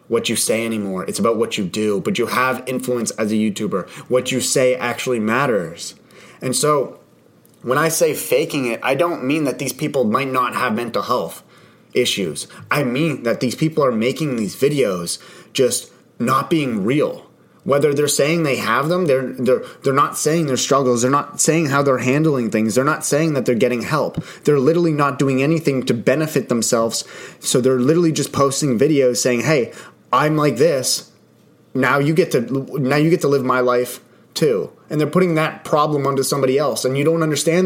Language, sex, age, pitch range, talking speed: English, male, 30-49, 125-160 Hz, 195 wpm